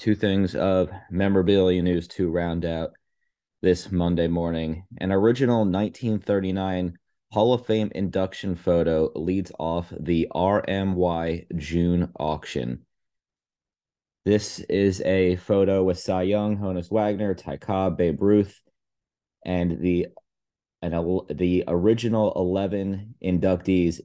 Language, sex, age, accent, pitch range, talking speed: English, male, 30-49, American, 85-95 Hz, 110 wpm